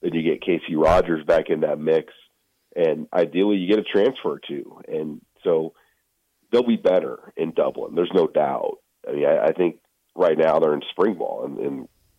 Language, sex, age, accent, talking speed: English, male, 40-59, American, 190 wpm